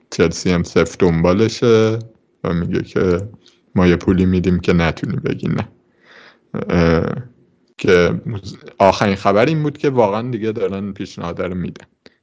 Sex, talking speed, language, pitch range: male, 130 wpm, Persian, 90-120 Hz